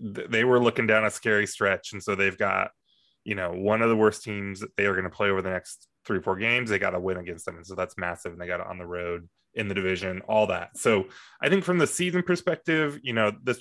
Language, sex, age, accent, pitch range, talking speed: English, male, 20-39, American, 95-125 Hz, 280 wpm